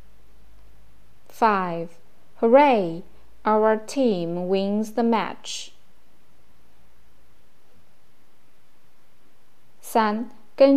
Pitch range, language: 185-230 Hz, Chinese